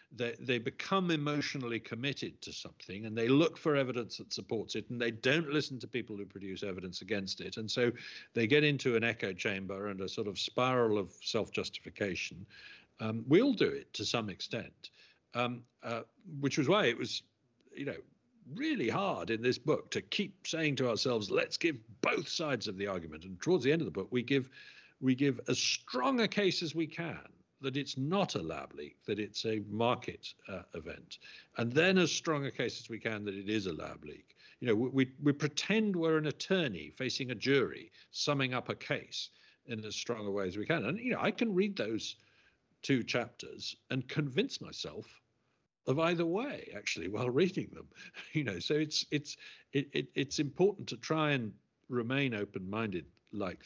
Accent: British